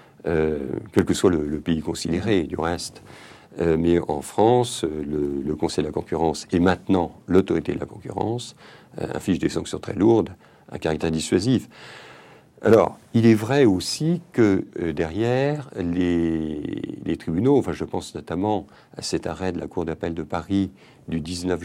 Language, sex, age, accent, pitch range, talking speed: French, male, 50-69, French, 80-115 Hz, 170 wpm